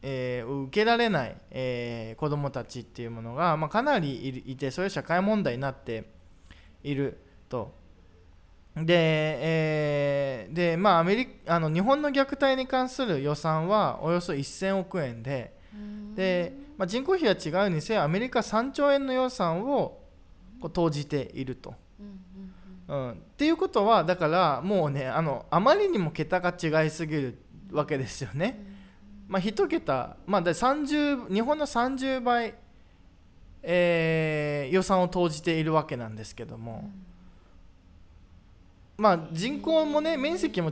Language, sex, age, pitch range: Japanese, male, 20-39, 135-205 Hz